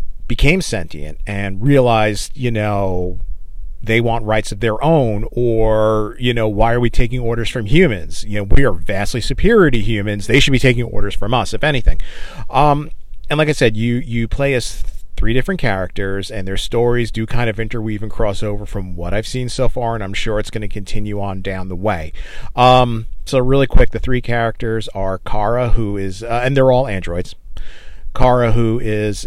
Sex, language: male, English